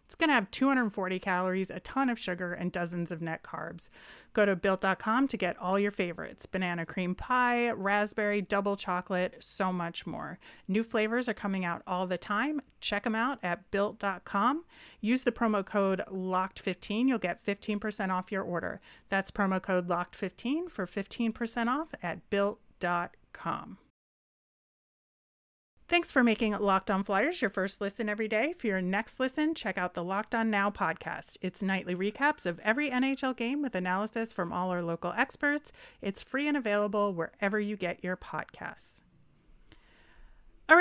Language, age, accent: English, 30-49, American